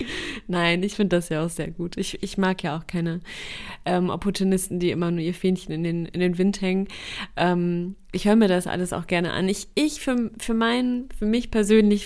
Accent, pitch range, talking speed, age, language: German, 175-195 Hz, 220 wpm, 30-49, German